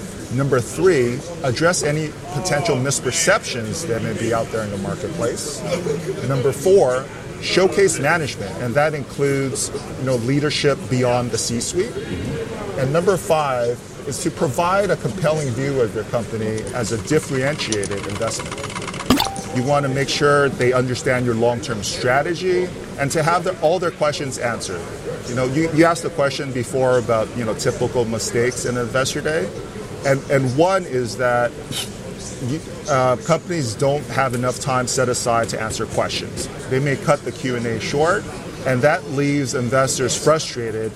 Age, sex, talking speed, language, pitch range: 40-59, male, 150 wpm, English, 120-145 Hz